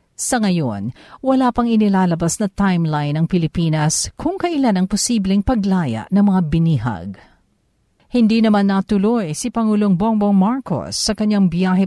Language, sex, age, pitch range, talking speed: Filipino, female, 50-69, 155-225 Hz, 135 wpm